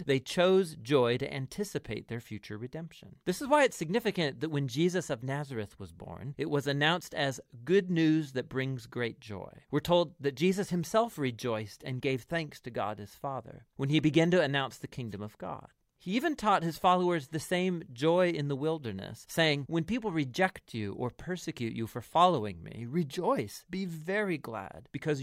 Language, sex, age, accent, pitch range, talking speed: English, male, 40-59, American, 125-175 Hz, 190 wpm